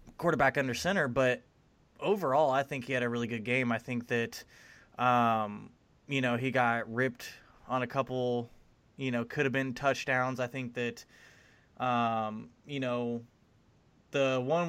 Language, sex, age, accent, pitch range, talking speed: English, male, 20-39, American, 120-135 Hz, 160 wpm